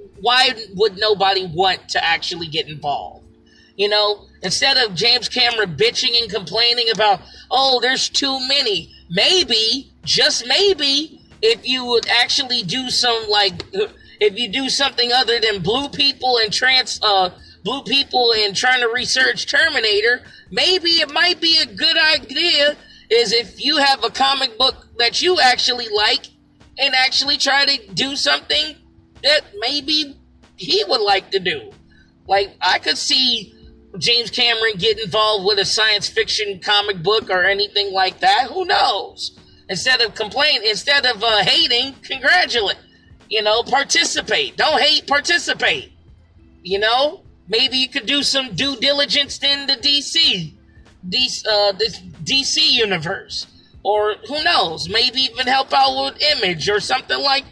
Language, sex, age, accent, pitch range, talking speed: English, male, 30-49, American, 210-285 Hz, 150 wpm